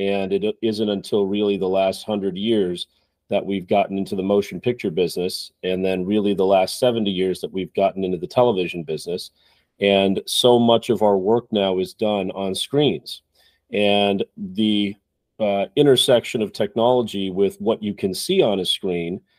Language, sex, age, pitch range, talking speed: English, male, 40-59, 95-110 Hz, 175 wpm